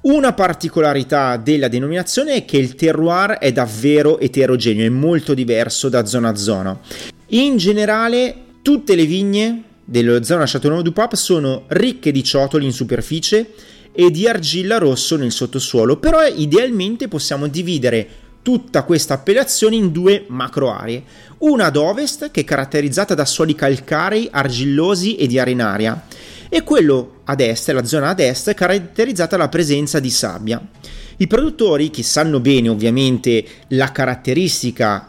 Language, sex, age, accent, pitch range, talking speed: Italian, male, 30-49, native, 125-185 Hz, 145 wpm